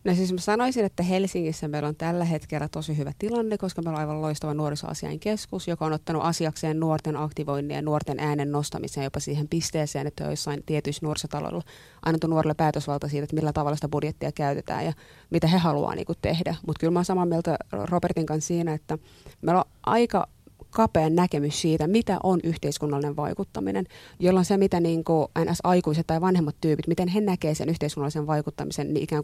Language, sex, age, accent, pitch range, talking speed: Finnish, female, 30-49, native, 150-180 Hz, 185 wpm